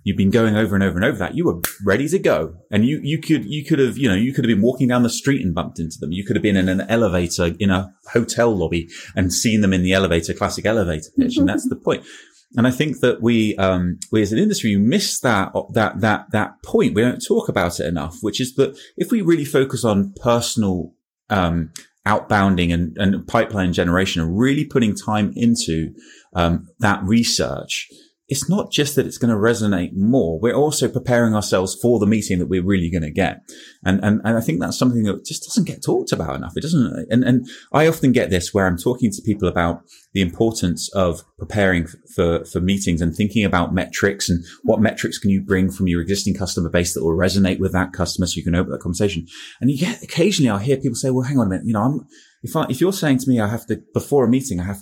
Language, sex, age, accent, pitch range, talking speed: English, male, 30-49, British, 95-125 Hz, 240 wpm